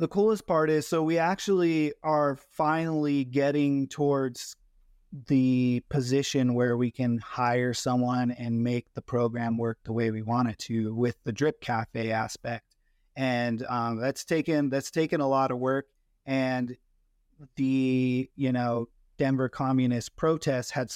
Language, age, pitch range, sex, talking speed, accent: English, 30-49, 120-145 Hz, male, 150 wpm, American